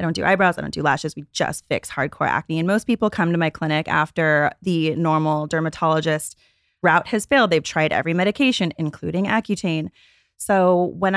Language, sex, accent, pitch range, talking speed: English, female, American, 160-200 Hz, 190 wpm